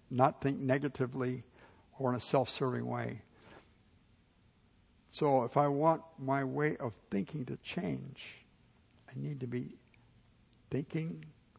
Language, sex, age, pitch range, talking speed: English, male, 60-79, 115-145 Hz, 120 wpm